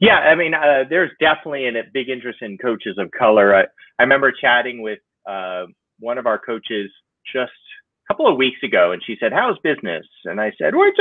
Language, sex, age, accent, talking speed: English, male, 30-49, American, 215 wpm